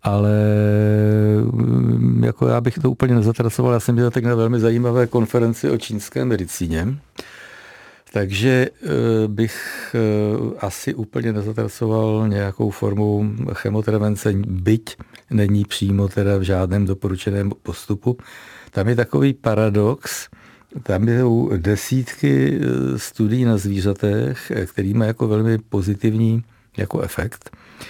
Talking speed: 110 wpm